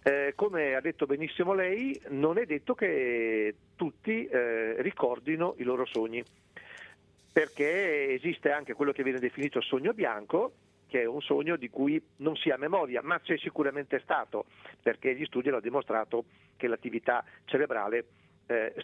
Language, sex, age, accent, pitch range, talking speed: Italian, male, 40-59, native, 120-175 Hz, 155 wpm